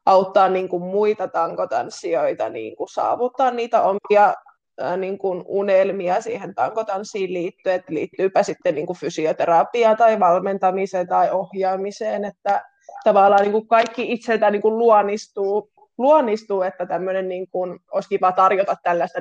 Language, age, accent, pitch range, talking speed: Finnish, 20-39, native, 195-225 Hz, 130 wpm